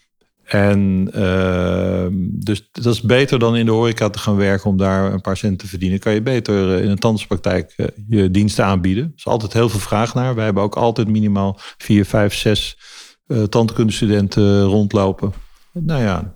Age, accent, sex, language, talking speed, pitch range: 40-59, Dutch, male, Dutch, 180 wpm, 100-110 Hz